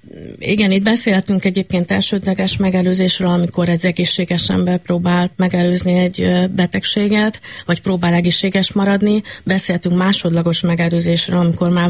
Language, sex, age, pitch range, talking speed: Hungarian, female, 30-49, 165-185 Hz, 115 wpm